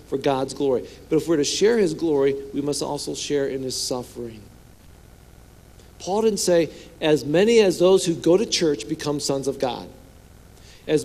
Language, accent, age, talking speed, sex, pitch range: English, American, 50-69, 180 wpm, male, 120-165 Hz